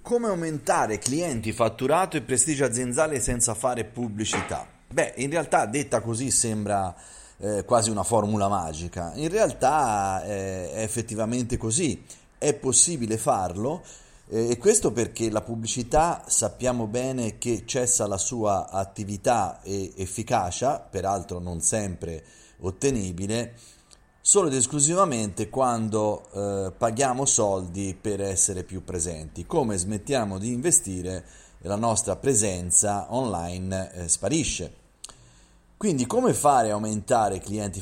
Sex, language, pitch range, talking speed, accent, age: male, Italian, 95-125 Hz, 120 wpm, native, 30-49